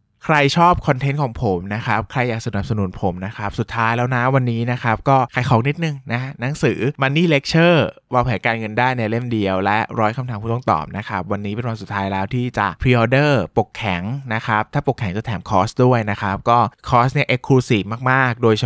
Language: Thai